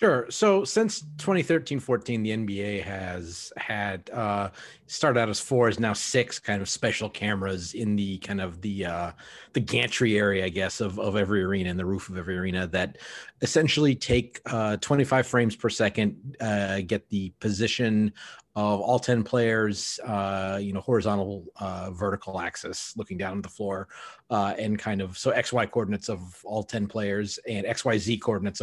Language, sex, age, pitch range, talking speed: English, male, 30-49, 100-115 Hz, 175 wpm